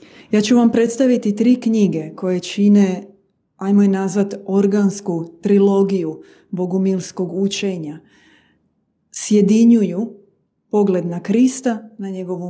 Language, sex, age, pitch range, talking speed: Croatian, female, 30-49, 185-215 Hz, 100 wpm